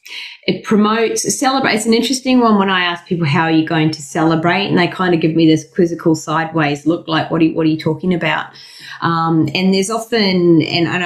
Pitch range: 150-170 Hz